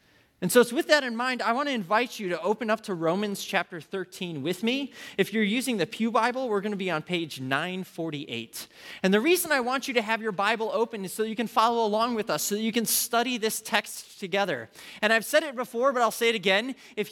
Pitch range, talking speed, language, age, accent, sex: 190-240 Hz, 245 wpm, English, 20-39, American, male